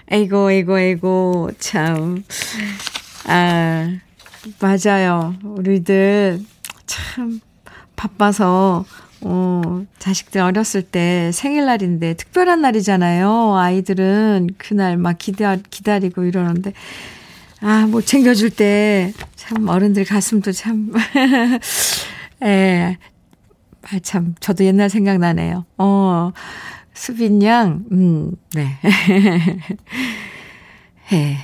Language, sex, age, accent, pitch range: Korean, female, 50-69, native, 180-220 Hz